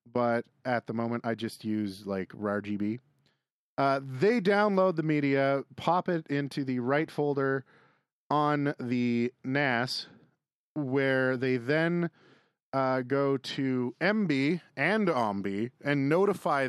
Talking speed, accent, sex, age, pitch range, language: 125 wpm, American, male, 30-49, 115-140 Hz, English